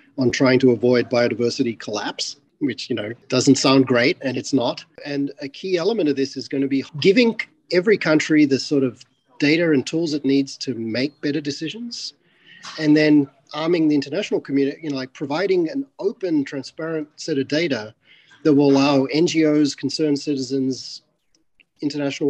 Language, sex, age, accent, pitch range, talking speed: English, male, 40-59, Australian, 125-150 Hz, 170 wpm